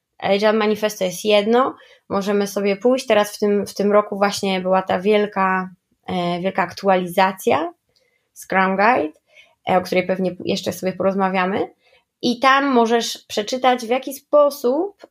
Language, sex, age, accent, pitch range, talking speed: Polish, female, 20-39, native, 190-240 Hz, 140 wpm